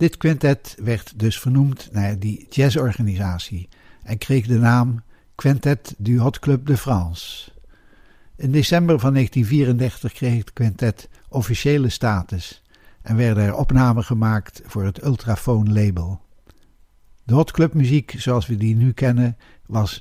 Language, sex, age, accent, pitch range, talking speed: Dutch, male, 60-79, Dutch, 105-135 Hz, 135 wpm